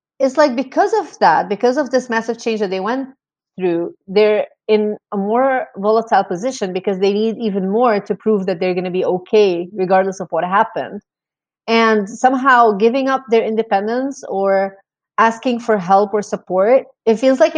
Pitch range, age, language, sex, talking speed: 185-230 Hz, 30-49, English, female, 180 wpm